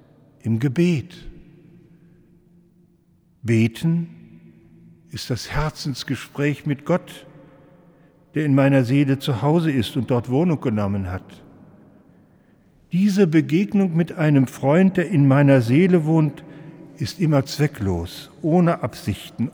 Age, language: 60-79, German